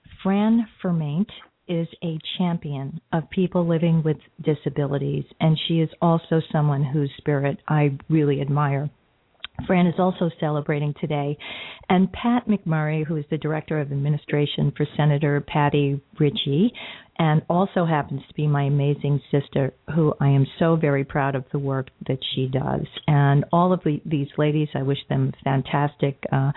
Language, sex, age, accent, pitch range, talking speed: English, female, 50-69, American, 140-170 Hz, 155 wpm